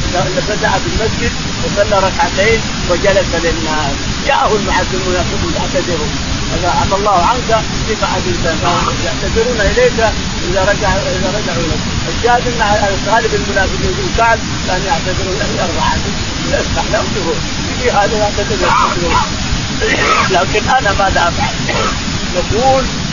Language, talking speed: Arabic, 80 wpm